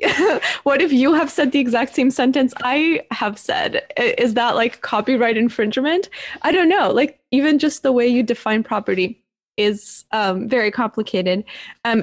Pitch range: 225-275 Hz